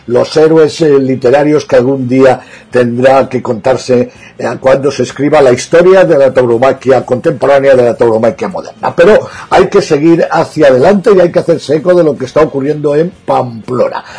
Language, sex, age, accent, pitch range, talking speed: Spanish, male, 50-69, Spanish, 130-160 Hz, 170 wpm